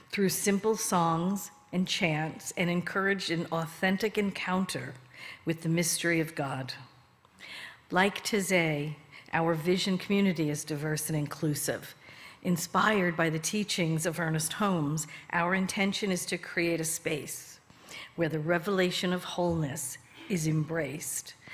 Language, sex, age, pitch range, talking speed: English, female, 50-69, 155-185 Hz, 125 wpm